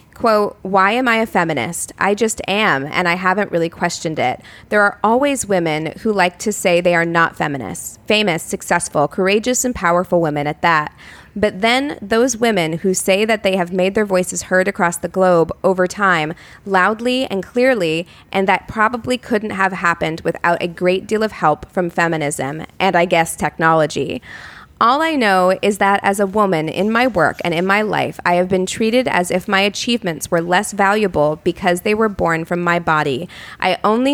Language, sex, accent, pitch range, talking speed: English, female, American, 175-215 Hz, 190 wpm